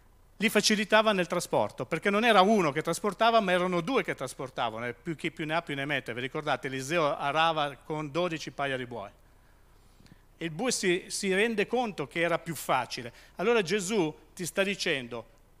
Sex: male